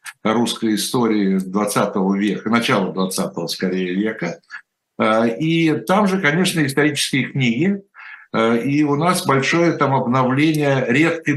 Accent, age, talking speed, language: native, 60-79, 110 wpm, Russian